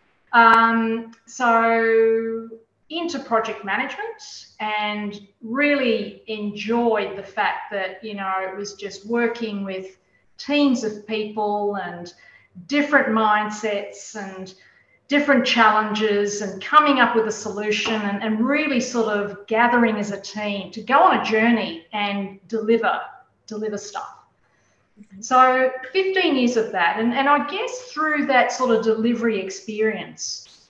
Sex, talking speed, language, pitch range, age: female, 130 wpm, English, 210-255 Hz, 40-59